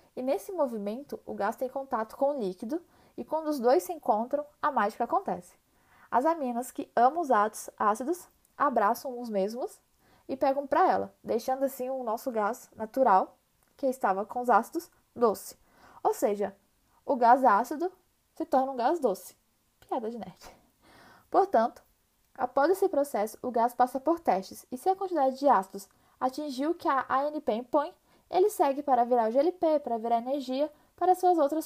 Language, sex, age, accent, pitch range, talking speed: Portuguese, female, 10-29, Brazilian, 240-300 Hz, 170 wpm